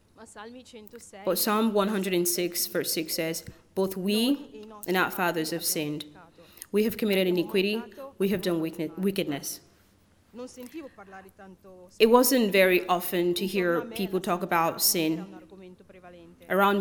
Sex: female